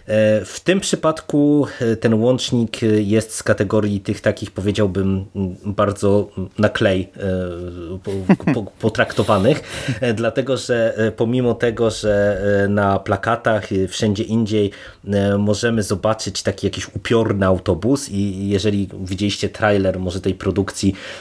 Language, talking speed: Polish, 100 wpm